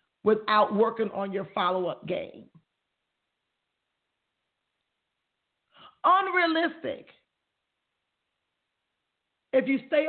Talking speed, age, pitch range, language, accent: 60 wpm, 50-69, 190-240 Hz, English, American